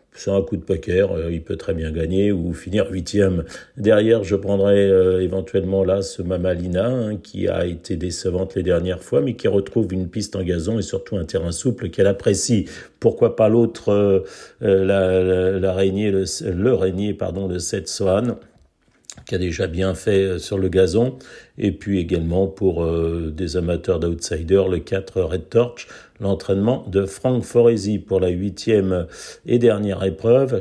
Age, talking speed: 50-69, 170 wpm